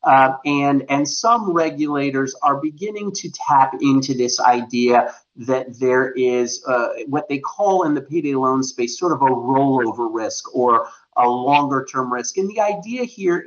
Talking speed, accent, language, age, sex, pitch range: 170 wpm, American, English, 30-49, male, 130-150 Hz